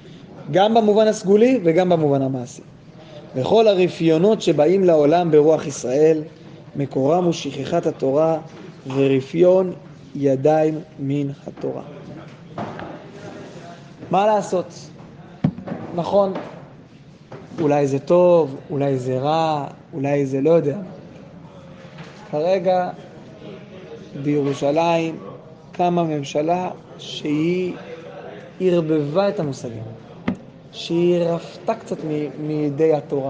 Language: English